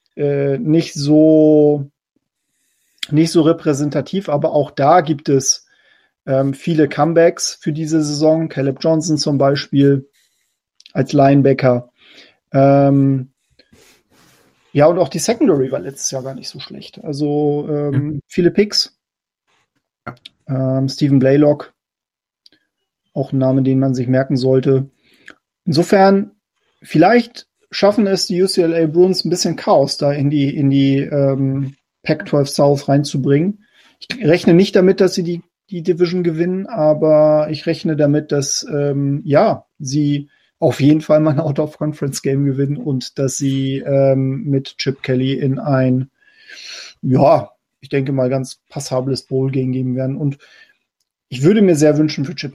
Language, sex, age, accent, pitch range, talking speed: German, male, 40-59, German, 135-165 Hz, 145 wpm